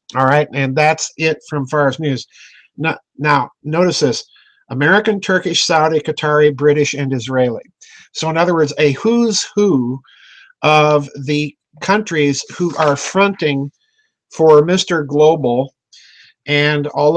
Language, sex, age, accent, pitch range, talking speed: English, male, 50-69, American, 140-175 Hz, 130 wpm